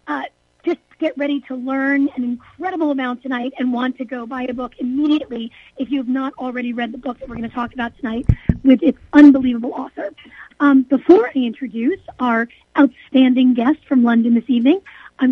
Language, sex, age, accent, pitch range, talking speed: English, female, 40-59, American, 255-300 Hz, 190 wpm